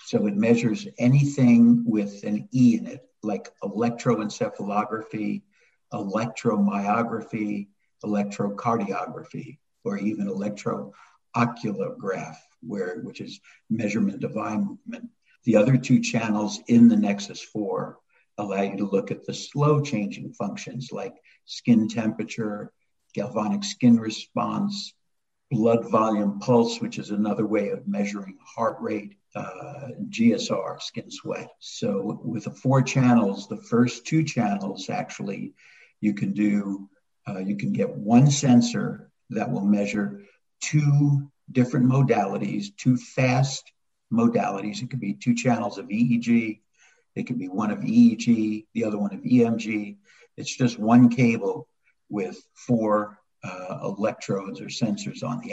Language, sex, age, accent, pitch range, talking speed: English, male, 60-79, American, 105-135 Hz, 130 wpm